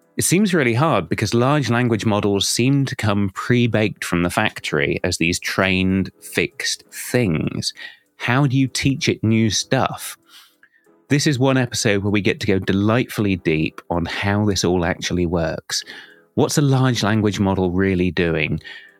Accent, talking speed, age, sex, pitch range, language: British, 160 wpm, 30-49, male, 95-125 Hz, English